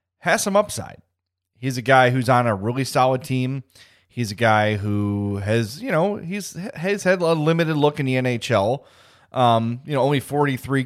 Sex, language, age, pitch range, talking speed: male, English, 30-49, 110-140 Hz, 180 wpm